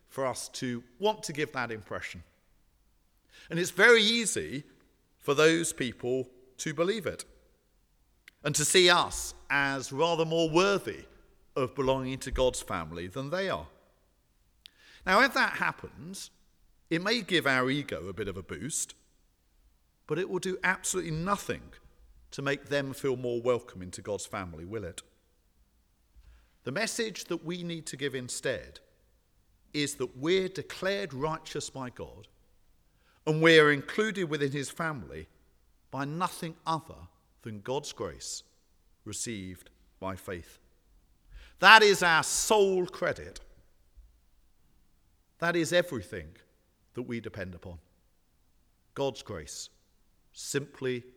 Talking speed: 130 wpm